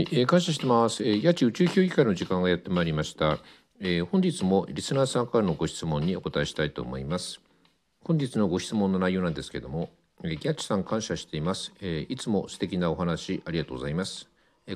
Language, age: Japanese, 50-69